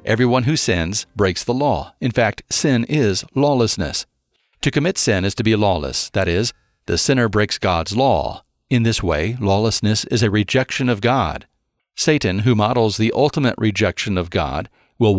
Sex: male